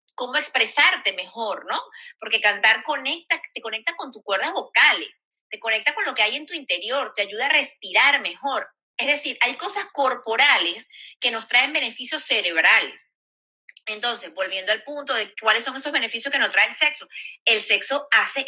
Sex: female